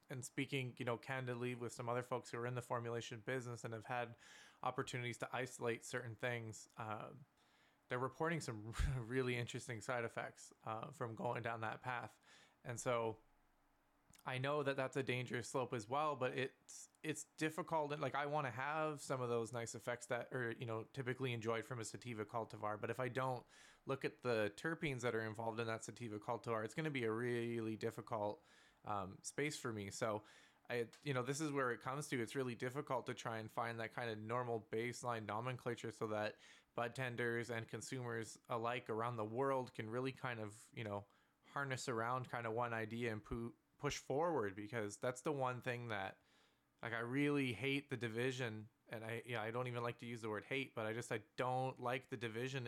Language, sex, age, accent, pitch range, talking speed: English, male, 20-39, American, 115-130 Hz, 205 wpm